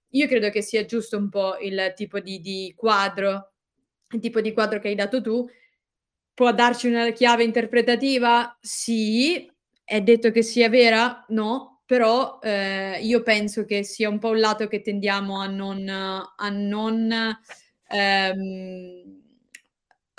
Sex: female